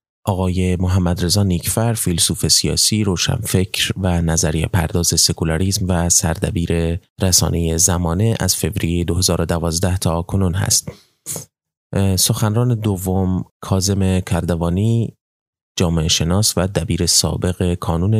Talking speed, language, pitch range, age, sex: 100 wpm, Persian, 85-105 Hz, 30-49, male